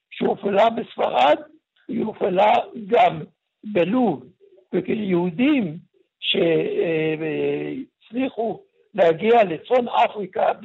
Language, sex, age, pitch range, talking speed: Hebrew, male, 60-79, 165-240 Hz, 75 wpm